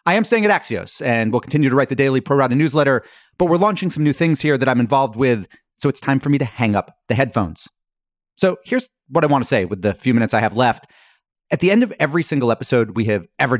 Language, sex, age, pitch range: English, male, 30-49, 115-150 Hz